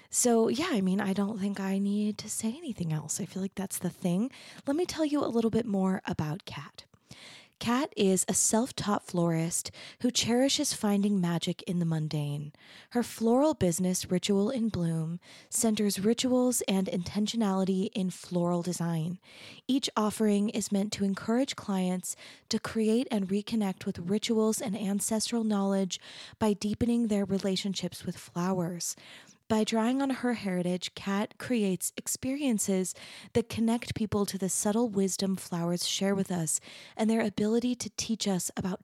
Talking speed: 160 wpm